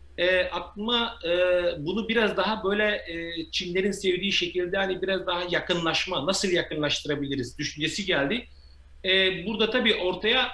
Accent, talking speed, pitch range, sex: native, 130 wpm, 150-195 Hz, male